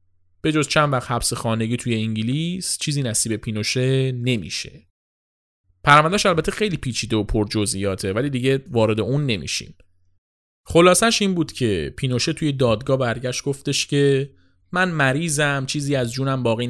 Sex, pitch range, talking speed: male, 105-145 Hz, 140 wpm